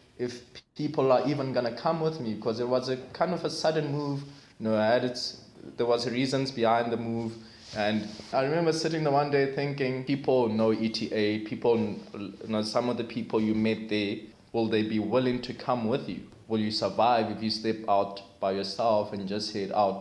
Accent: South African